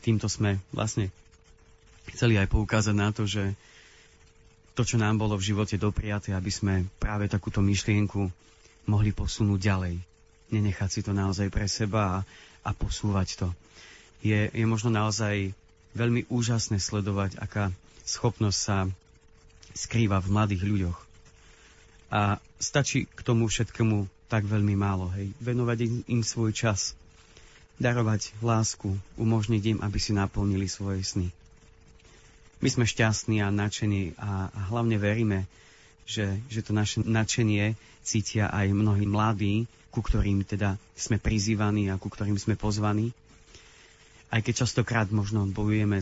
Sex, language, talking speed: male, Slovak, 135 wpm